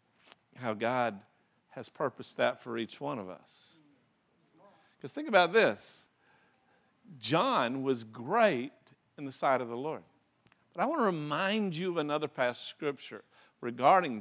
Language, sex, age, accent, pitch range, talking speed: English, male, 50-69, American, 135-205 Hz, 145 wpm